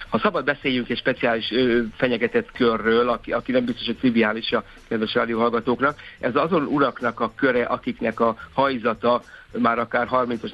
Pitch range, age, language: 110-125 Hz, 60-79, Hungarian